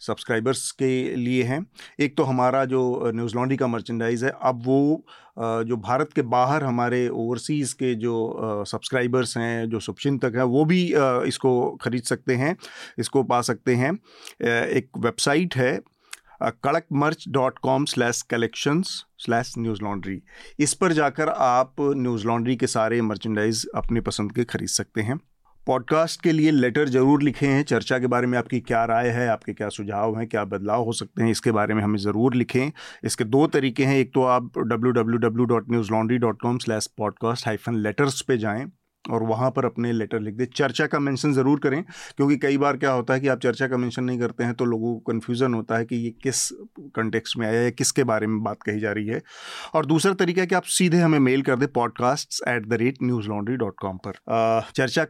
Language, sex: Hindi, male